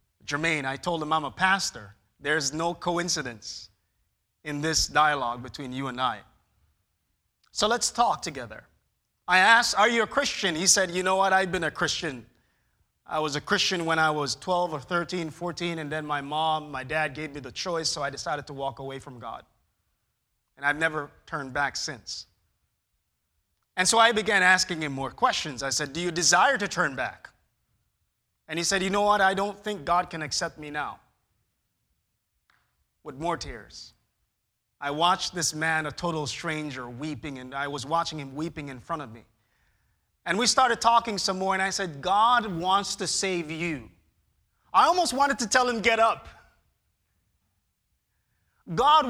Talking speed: 175 wpm